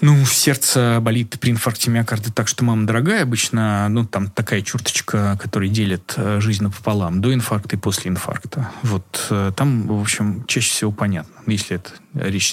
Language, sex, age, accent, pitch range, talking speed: Russian, male, 20-39, native, 105-130 Hz, 165 wpm